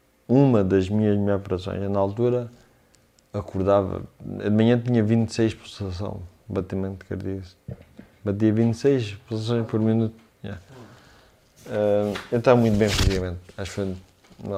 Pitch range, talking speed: 100-115 Hz, 125 wpm